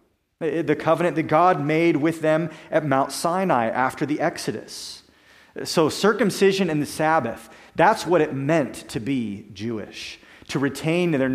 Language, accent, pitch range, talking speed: English, American, 130-165 Hz, 150 wpm